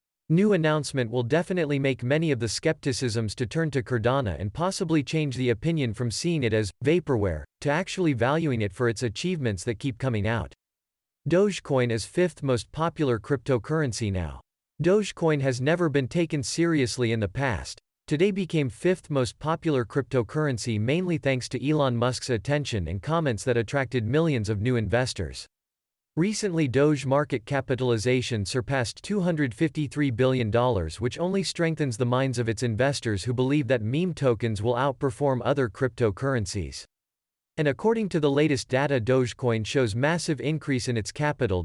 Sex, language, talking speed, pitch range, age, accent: male, English, 155 wpm, 120-155 Hz, 40-59, American